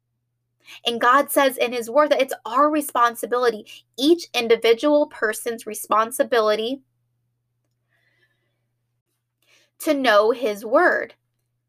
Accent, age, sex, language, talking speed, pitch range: American, 20-39, female, English, 90 wpm, 200-250 Hz